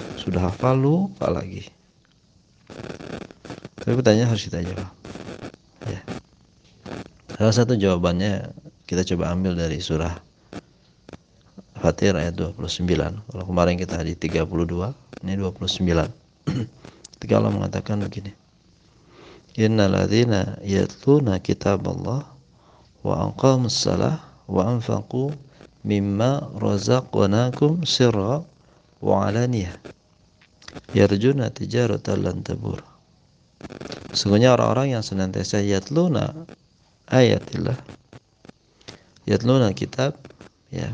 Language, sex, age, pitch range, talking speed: Indonesian, male, 50-69, 95-130 Hz, 85 wpm